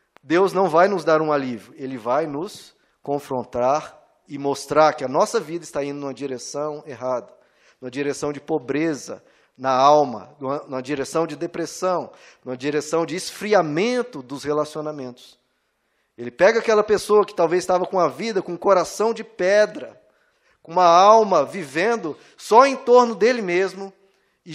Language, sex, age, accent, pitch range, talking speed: Portuguese, male, 20-39, Brazilian, 145-210 Hz, 155 wpm